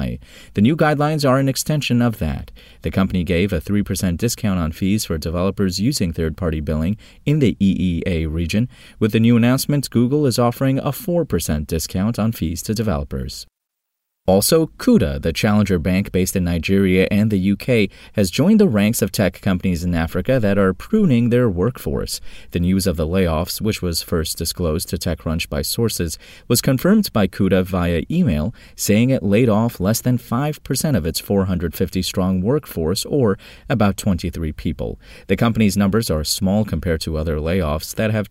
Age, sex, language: 30-49, male, English